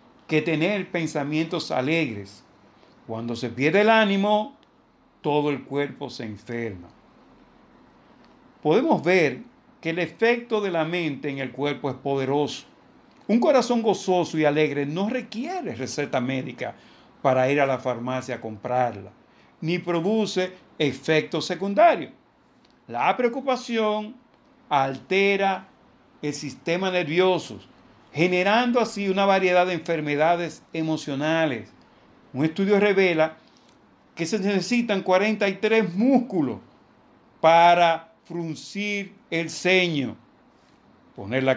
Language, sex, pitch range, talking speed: Spanish, male, 145-200 Hz, 105 wpm